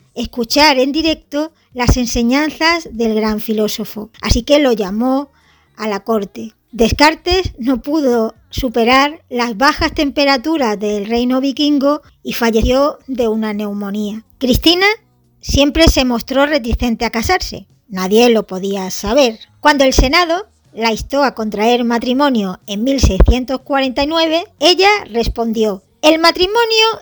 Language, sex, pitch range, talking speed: Spanish, male, 225-305 Hz, 120 wpm